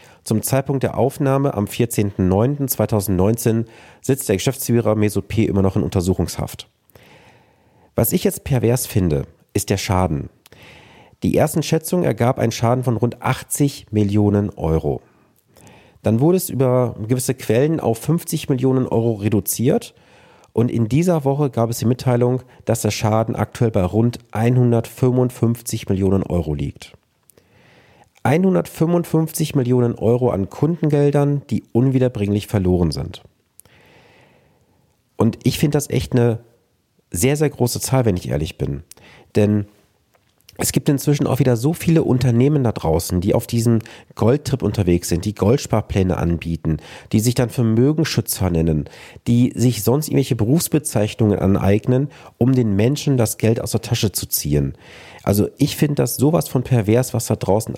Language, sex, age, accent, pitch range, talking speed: German, male, 40-59, German, 105-130 Hz, 140 wpm